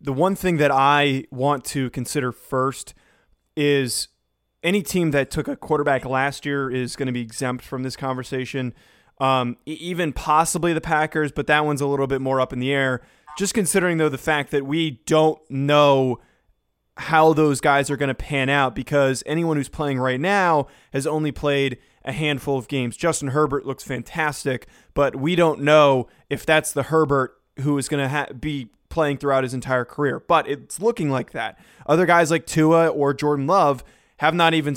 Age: 20-39